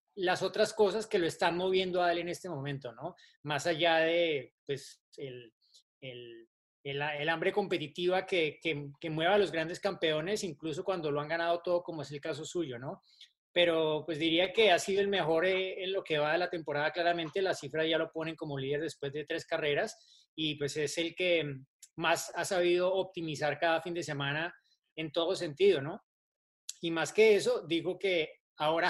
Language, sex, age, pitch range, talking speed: Spanish, male, 30-49, 155-185 Hz, 195 wpm